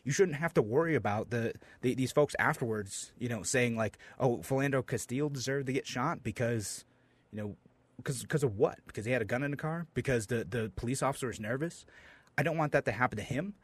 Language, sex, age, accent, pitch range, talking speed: English, male, 30-49, American, 110-140 Hz, 225 wpm